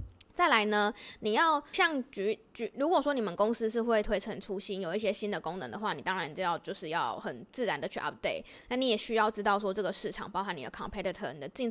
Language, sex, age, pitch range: Chinese, female, 10-29, 205-245 Hz